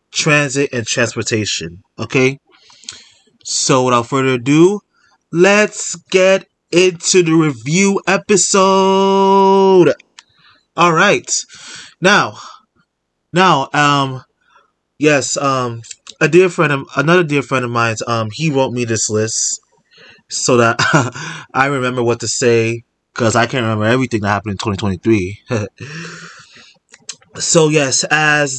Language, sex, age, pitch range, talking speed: English, male, 20-39, 120-170 Hz, 115 wpm